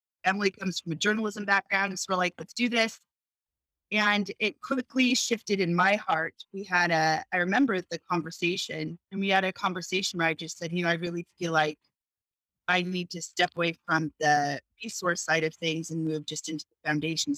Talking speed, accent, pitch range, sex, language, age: 205 wpm, American, 155-185 Hz, female, English, 30-49